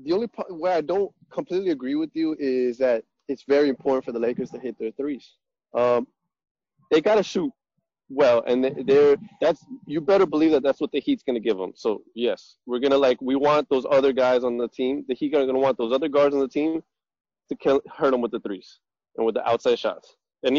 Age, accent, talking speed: 20-39, American, 240 wpm